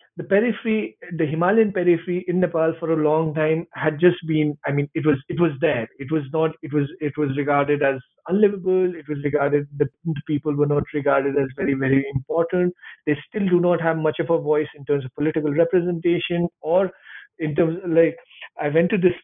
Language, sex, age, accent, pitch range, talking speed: English, male, 50-69, Indian, 155-185 Hz, 205 wpm